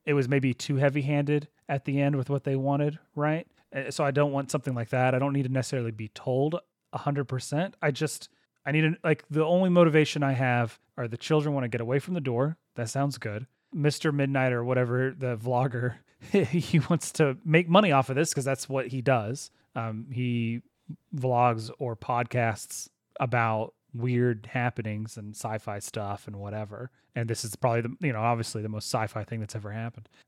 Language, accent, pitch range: English, American, 120-150 Hz